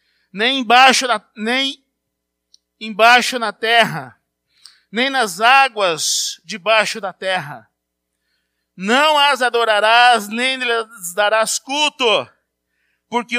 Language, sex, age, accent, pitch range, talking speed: Portuguese, male, 50-69, Brazilian, 195-255 Hz, 85 wpm